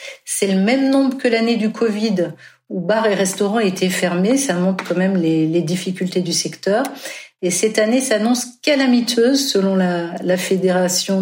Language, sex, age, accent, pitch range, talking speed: French, female, 50-69, French, 180-225 Hz, 170 wpm